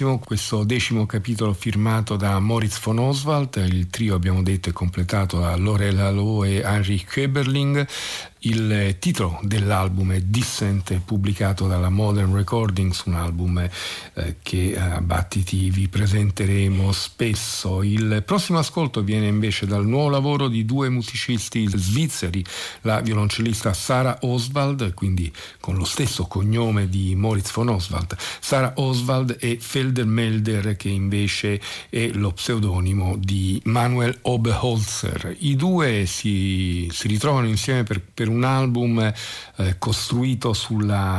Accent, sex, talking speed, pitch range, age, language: native, male, 130 wpm, 95-115 Hz, 50-69, Italian